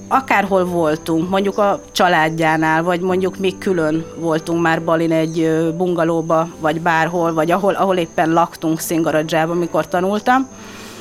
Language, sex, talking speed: Hungarian, female, 130 wpm